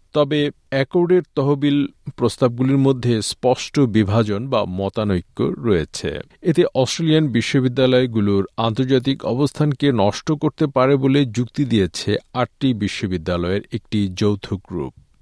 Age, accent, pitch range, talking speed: 50-69, native, 100-135 Hz, 105 wpm